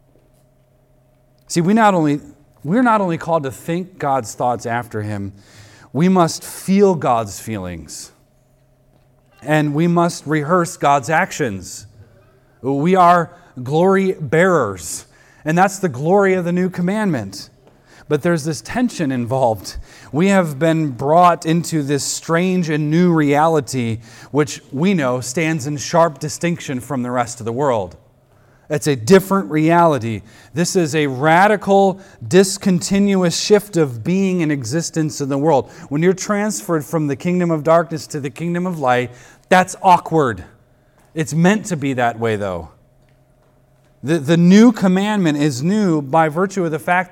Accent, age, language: American, 30-49, English